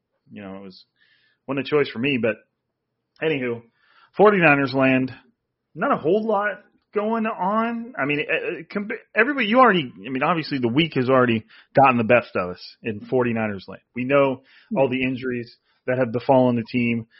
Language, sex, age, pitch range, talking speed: English, male, 30-49, 115-145 Hz, 175 wpm